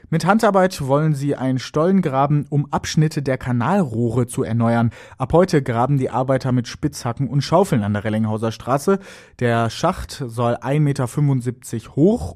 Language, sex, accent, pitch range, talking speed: German, male, German, 120-165 Hz, 155 wpm